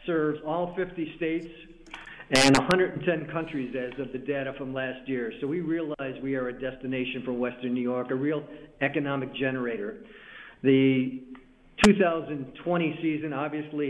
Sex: male